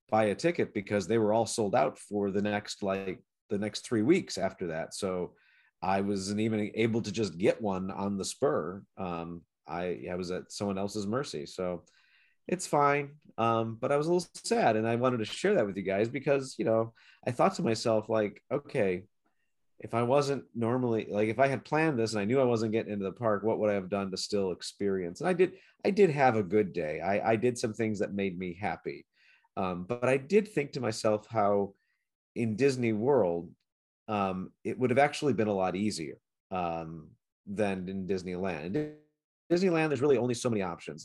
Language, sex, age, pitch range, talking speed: English, male, 40-59, 100-130 Hz, 210 wpm